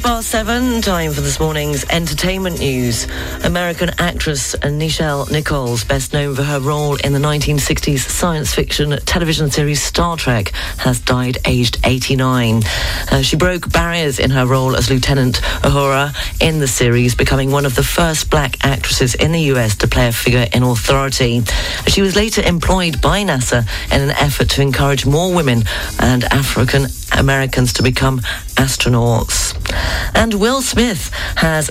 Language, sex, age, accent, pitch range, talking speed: English, female, 40-59, British, 120-160 Hz, 155 wpm